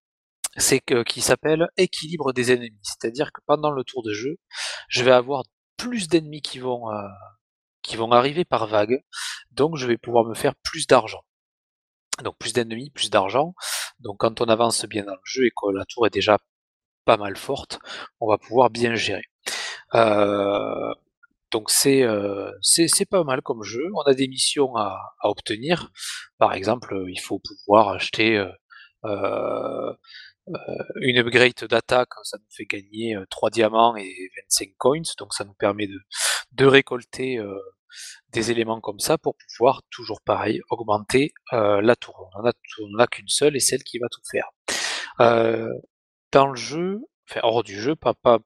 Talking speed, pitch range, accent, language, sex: 175 wpm, 110-135 Hz, French, French, male